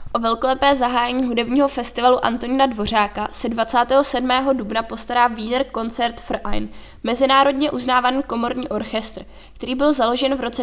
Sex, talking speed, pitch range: female, 135 wpm, 225-260 Hz